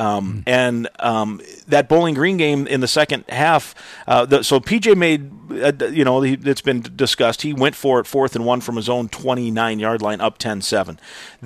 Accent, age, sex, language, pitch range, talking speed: American, 40-59, male, English, 120-155 Hz, 190 wpm